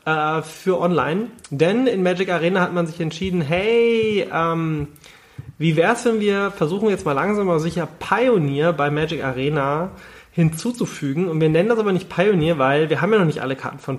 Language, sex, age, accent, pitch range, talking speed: German, male, 30-49, German, 155-205 Hz, 190 wpm